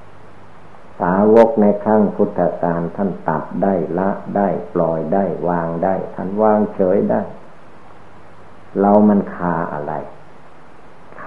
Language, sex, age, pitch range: Thai, male, 60-79, 85-105 Hz